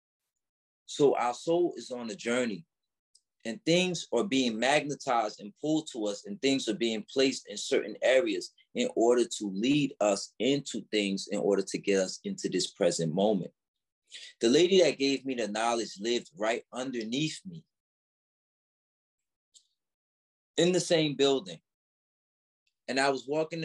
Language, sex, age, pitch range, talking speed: English, male, 20-39, 120-180 Hz, 150 wpm